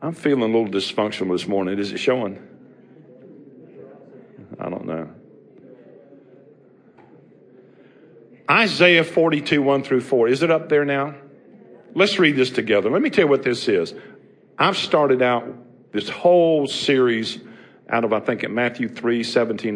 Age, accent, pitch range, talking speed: 50-69, American, 105-140 Hz, 145 wpm